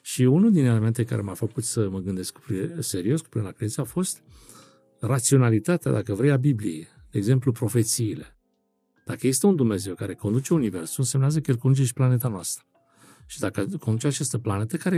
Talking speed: 190 wpm